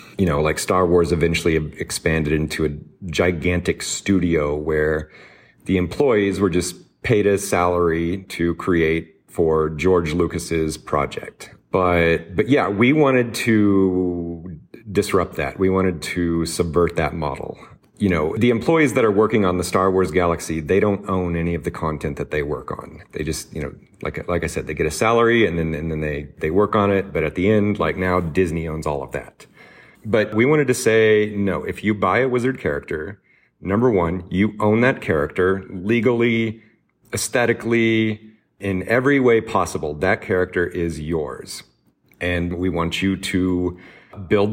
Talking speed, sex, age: 175 wpm, male, 40-59